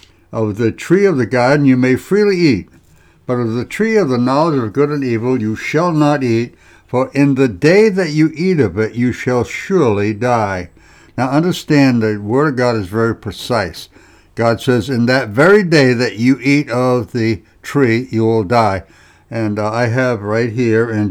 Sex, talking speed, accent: male, 195 wpm, American